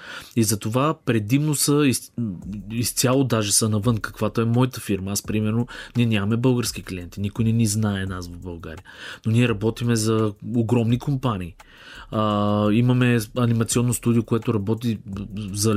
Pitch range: 100-120 Hz